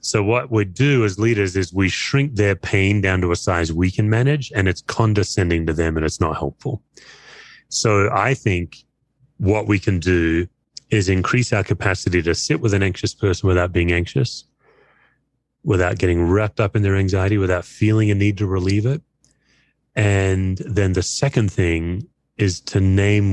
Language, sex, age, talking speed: English, male, 30-49, 175 wpm